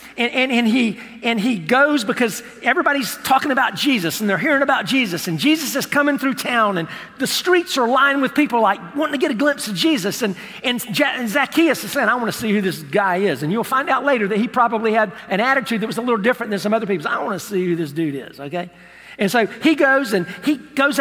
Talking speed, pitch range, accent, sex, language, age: 245 wpm, 220-280 Hz, American, male, English, 50-69